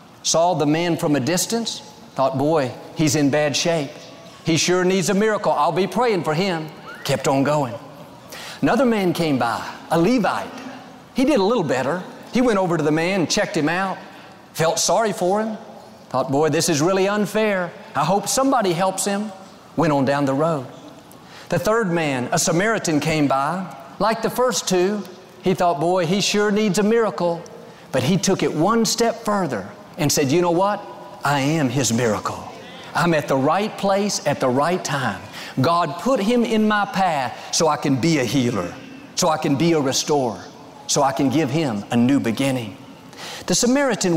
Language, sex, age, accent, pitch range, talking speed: English, male, 40-59, American, 145-195 Hz, 185 wpm